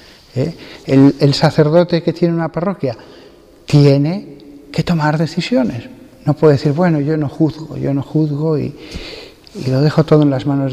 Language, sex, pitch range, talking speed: Spanish, male, 135-175 Hz, 170 wpm